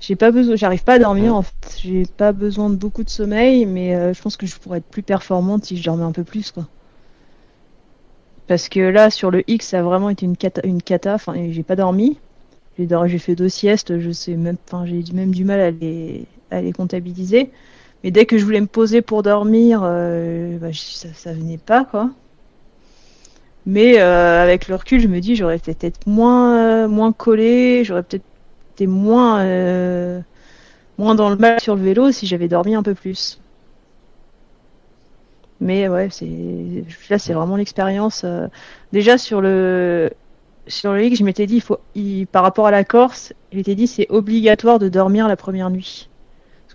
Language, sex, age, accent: French, female, 40-59, French